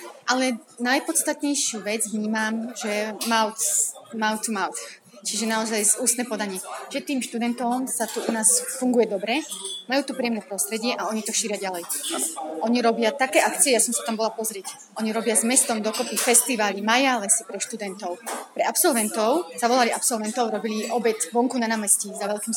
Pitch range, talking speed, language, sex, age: 210-240 Hz, 160 wpm, Slovak, female, 30-49